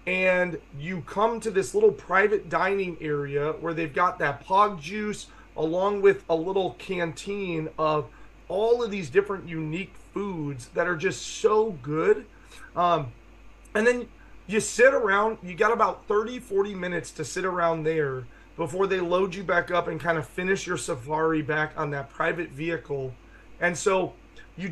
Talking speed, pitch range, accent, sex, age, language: 165 wpm, 155-195 Hz, American, male, 30-49, English